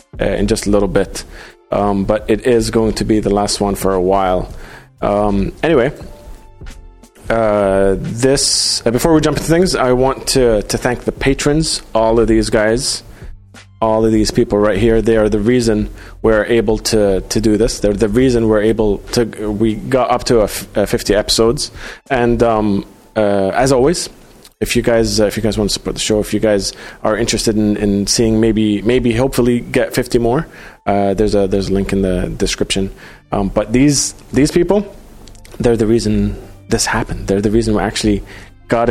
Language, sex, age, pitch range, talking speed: English, male, 30-49, 100-120 Hz, 195 wpm